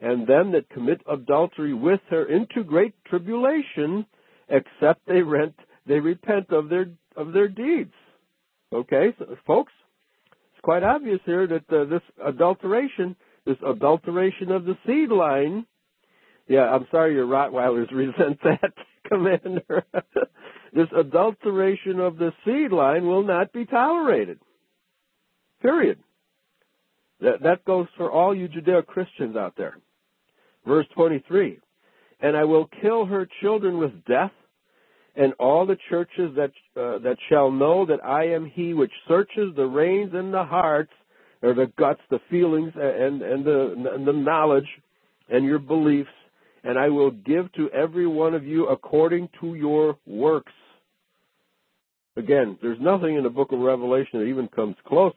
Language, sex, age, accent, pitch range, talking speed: English, male, 60-79, American, 135-185 Hz, 145 wpm